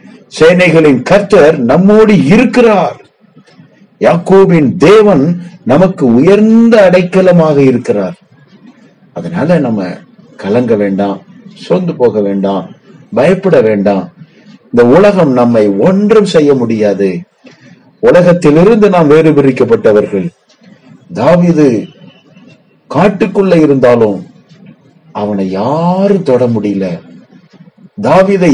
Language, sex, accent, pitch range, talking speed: Tamil, male, native, 120-200 Hz, 75 wpm